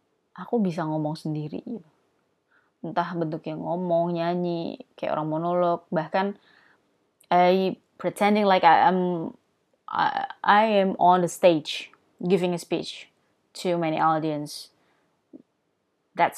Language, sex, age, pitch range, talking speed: Indonesian, female, 20-39, 155-190 Hz, 110 wpm